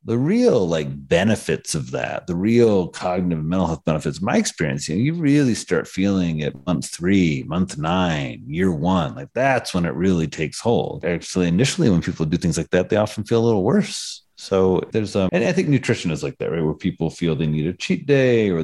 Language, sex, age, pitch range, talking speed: English, male, 30-49, 90-110 Hz, 220 wpm